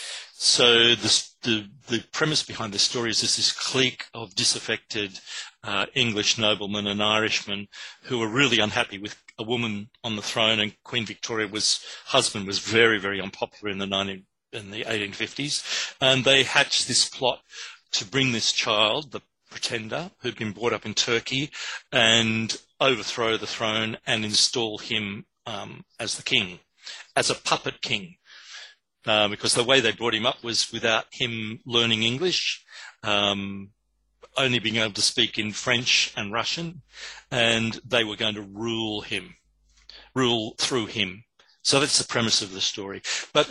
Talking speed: 160 wpm